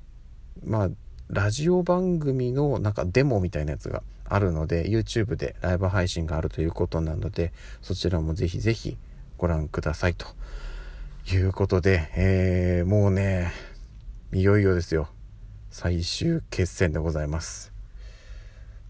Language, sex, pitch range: Japanese, male, 85-105 Hz